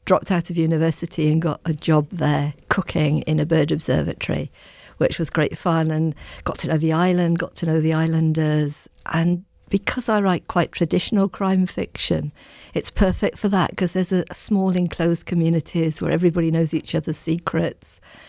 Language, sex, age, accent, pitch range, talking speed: English, female, 60-79, British, 155-175 Hz, 175 wpm